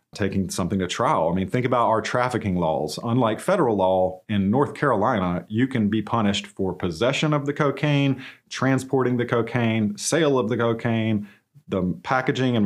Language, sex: English, male